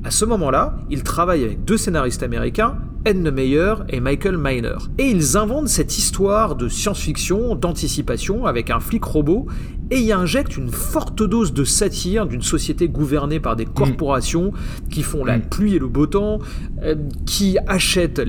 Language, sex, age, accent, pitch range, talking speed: French, male, 40-59, French, 140-200 Hz, 165 wpm